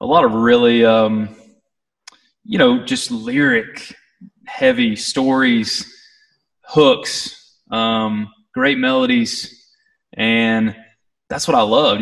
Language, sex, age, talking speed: English, male, 20-39, 100 wpm